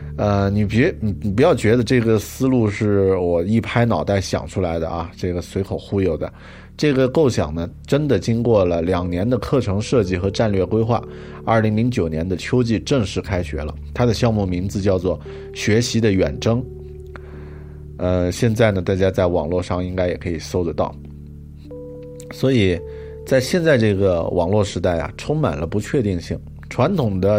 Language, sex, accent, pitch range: Chinese, male, native, 90-115 Hz